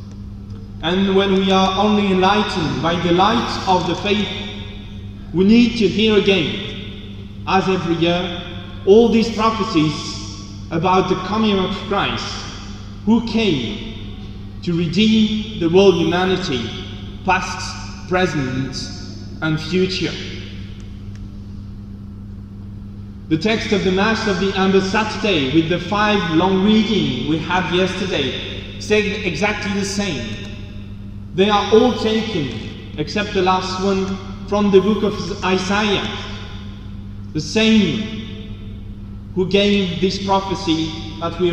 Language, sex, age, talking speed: English, male, 30-49, 115 wpm